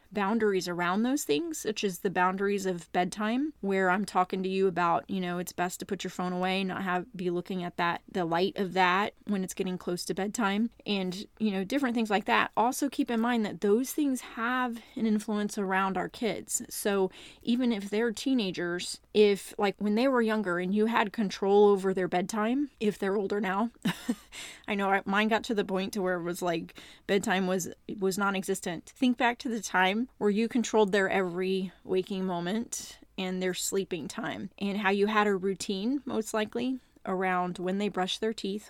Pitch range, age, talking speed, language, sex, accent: 190-230 Hz, 30-49, 200 wpm, English, female, American